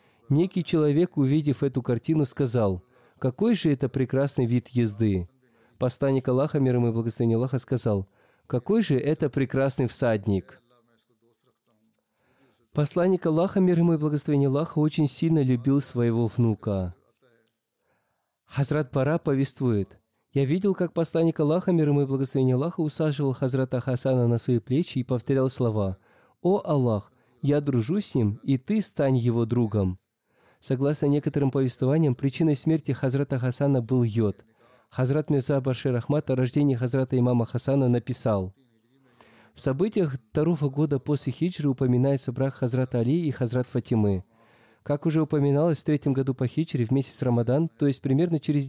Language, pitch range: Russian, 120-150 Hz